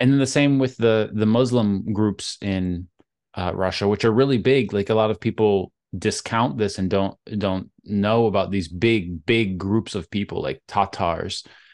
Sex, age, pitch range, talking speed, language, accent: male, 20-39, 100-120 Hz, 185 wpm, English, American